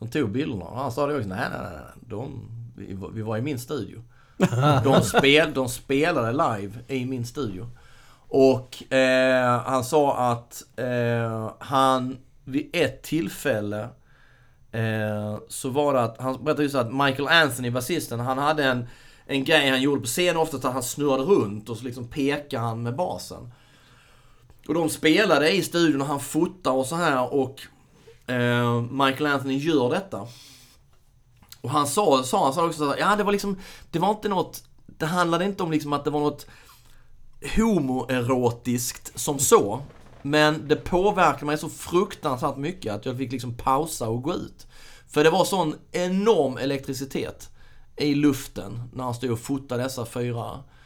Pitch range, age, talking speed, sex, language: 120-150 Hz, 30-49, 165 wpm, male, Swedish